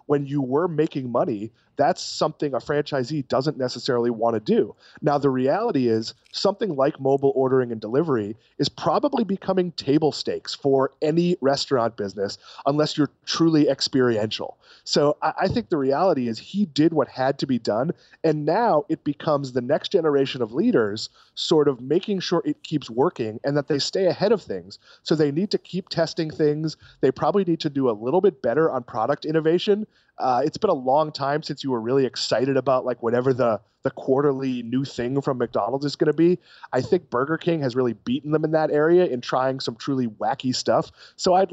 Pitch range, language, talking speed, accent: 130-160 Hz, English, 200 wpm, American